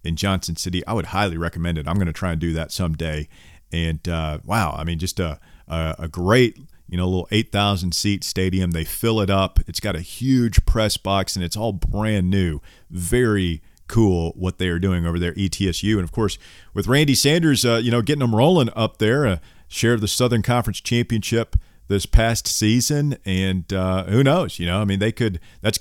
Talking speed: 210 wpm